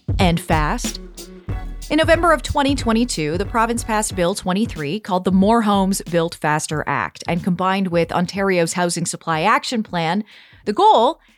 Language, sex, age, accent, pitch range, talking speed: English, female, 30-49, American, 175-260 Hz, 150 wpm